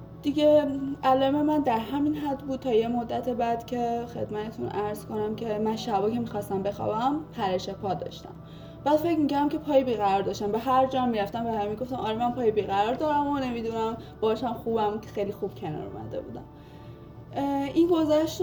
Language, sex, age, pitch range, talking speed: Persian, female, 20-39, 205-265 Hz, 180 wpm